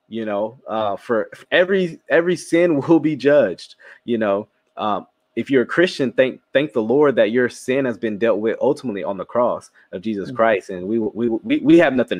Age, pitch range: 20-39, 110-155 Hz